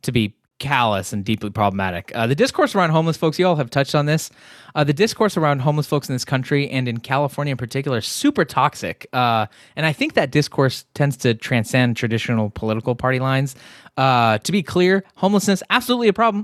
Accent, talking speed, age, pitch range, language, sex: American, 200 wpm, 20-39, 125-170 Hz, English, male